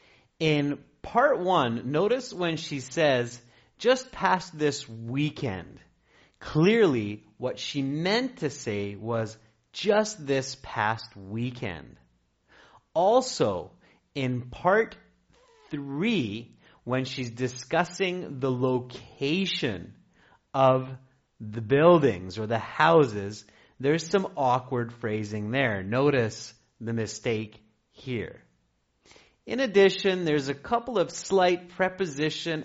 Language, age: English, 30-49